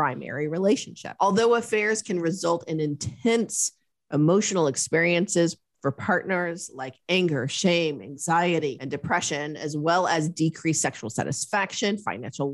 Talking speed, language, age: 120 wpm, English, 30-49